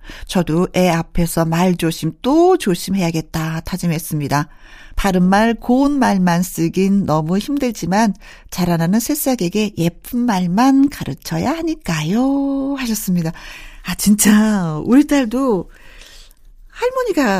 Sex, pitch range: female, 170-240 Hz